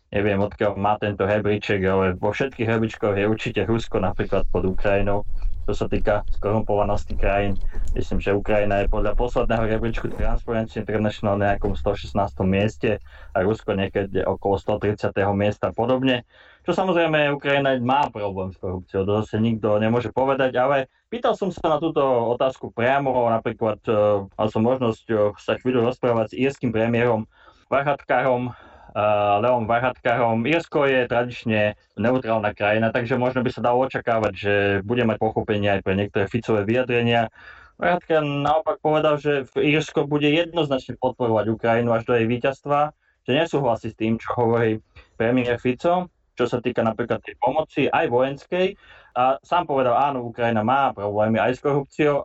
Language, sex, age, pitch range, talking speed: Slovak, male, 20-39, 105-125 Hz, 155 wpm